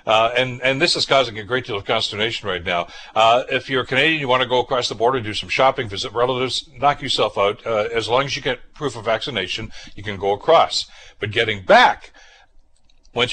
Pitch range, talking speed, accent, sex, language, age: 105-130 Hz, 220 wpm, American, male, English, 60-79